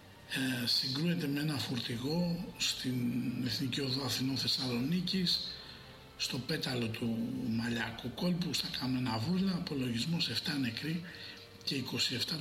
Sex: male